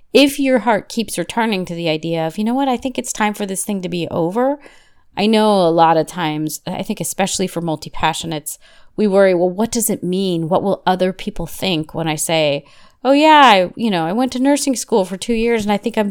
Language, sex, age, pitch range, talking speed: English, female, 30-49, 165-225 Hz, 240 wpm